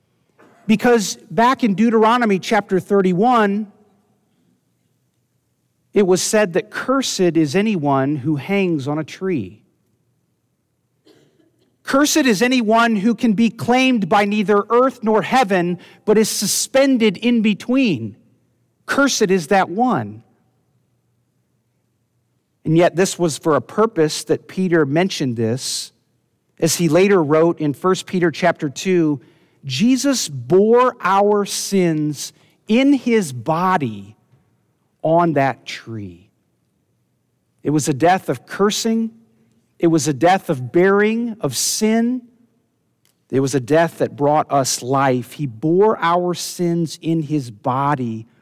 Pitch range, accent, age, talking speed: 145-215 Hz, American, 50-69, 120 wpm